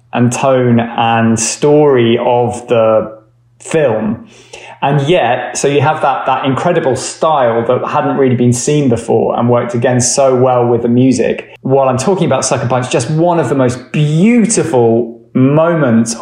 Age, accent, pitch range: 20-39, British, 120-150 Hz